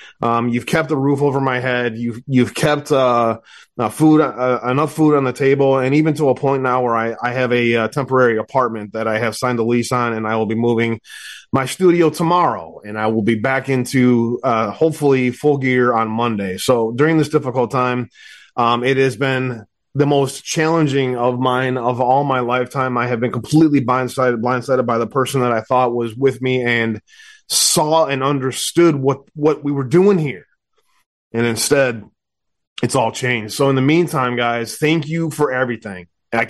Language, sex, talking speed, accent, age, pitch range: English, male, 195 wpm, American, 30-49, 120-140 Hz